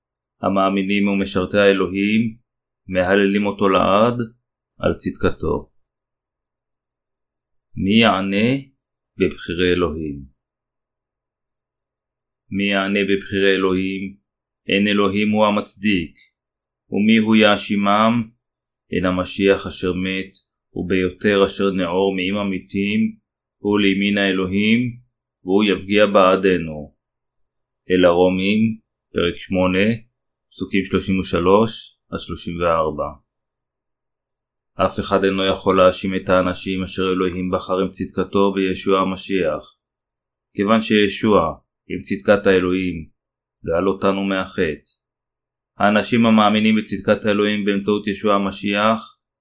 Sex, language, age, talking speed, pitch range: male, Hebrew, 30-49, 90 wpm, 95-105 Hz